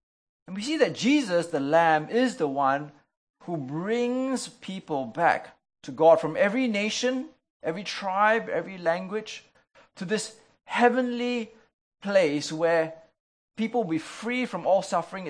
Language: English